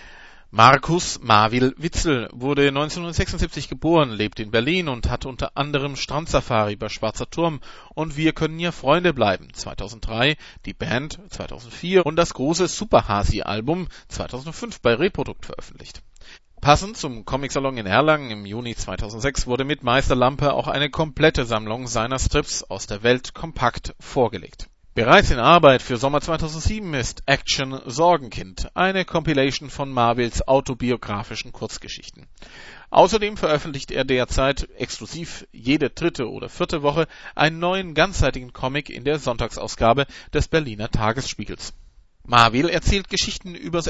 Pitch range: 115-160 Hz